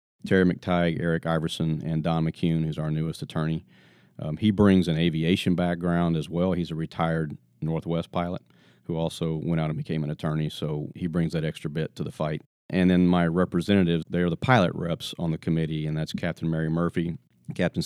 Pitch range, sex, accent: 80-95 Hz, male, American